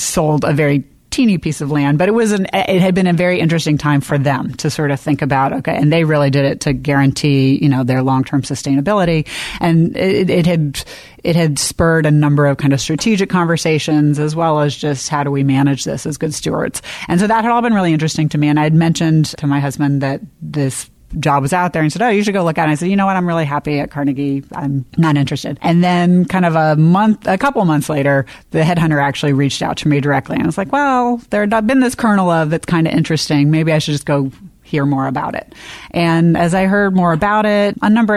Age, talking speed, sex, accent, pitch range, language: 30-49, 260 wpm, female, American, 140-170 Hz, English